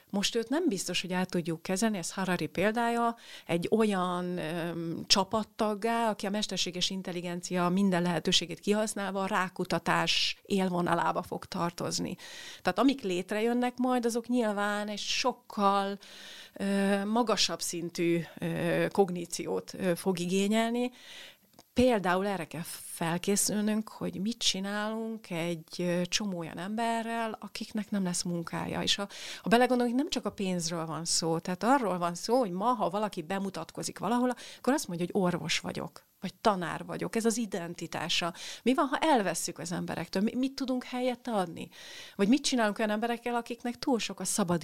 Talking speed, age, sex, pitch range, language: 150 wpm, 40-59, female, 175-230 Hz, Hungarian